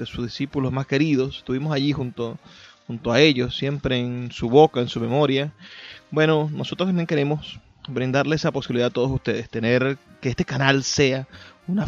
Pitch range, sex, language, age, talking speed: 125-155 Hz, male, Spanish, 30-49, 165 wpm